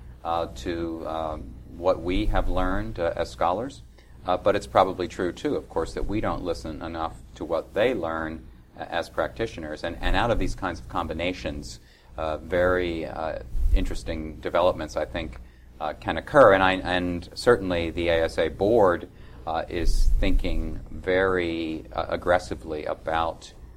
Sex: male